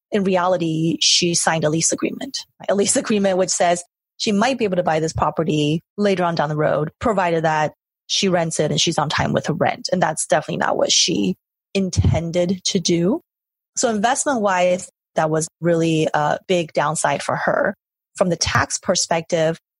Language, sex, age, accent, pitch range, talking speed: English, female, 30-49, American, 165-200 Hz, 180 wpm